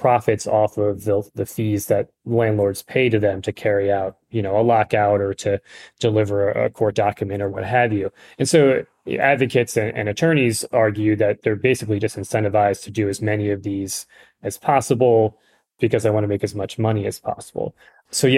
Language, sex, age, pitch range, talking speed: English, male, 20-39, 105-120 Hz, 195 wpm